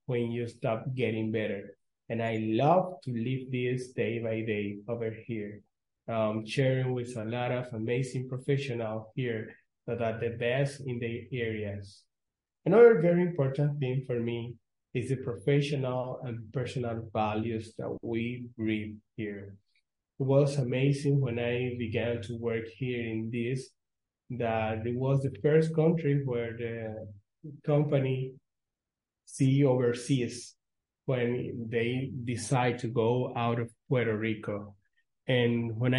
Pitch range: 115-140 Hz